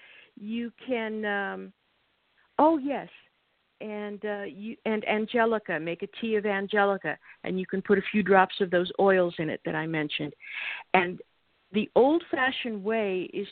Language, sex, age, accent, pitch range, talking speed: English, female, 50-69, American, 185-230 Hz, 155 wpm